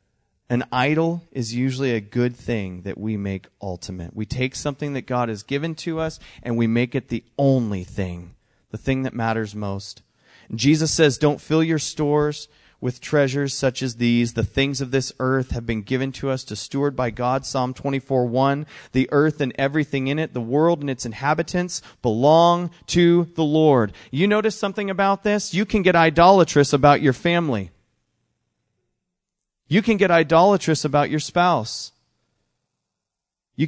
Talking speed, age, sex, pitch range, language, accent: 170 wpm, 30-49, male, 120-160 Hz, English, American